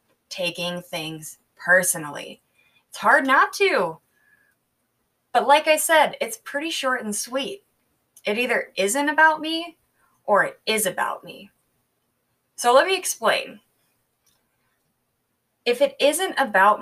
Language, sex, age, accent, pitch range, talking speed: English, female, 20-39, American, 185-270 Hz, 120 wpm